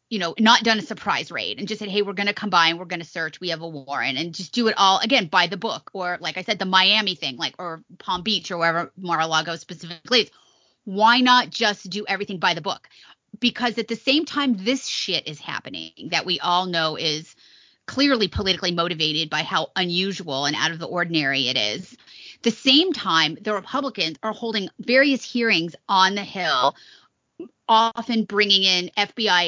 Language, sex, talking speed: English, female, 205 wpm